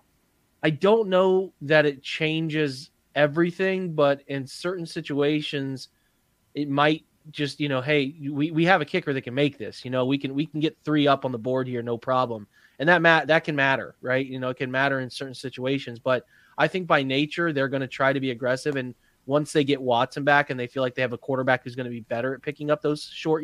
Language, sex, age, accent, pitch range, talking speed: English, male, 20-39, American, 120-150 Hz, 235 wpm